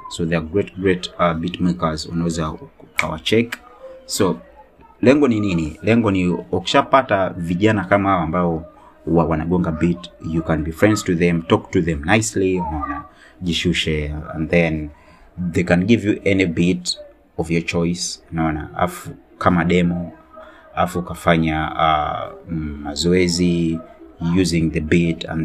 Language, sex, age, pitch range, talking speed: Swahili, male, 30-49, 80-95 Hz, 140 wpm